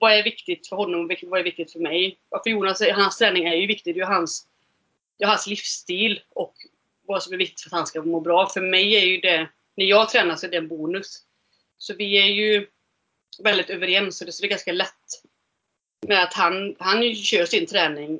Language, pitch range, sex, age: Swedish, 170-205 Hz, female, 30-49